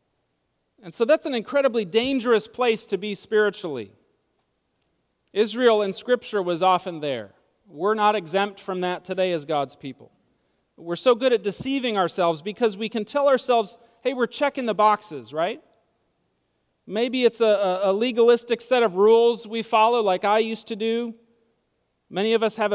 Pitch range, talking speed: 190-240 Hz, 160 wpm